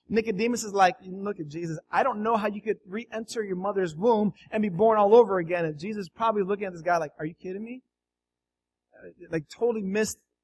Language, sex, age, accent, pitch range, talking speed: English, male, 30-49, American, 165-255 Hz, 220 wpm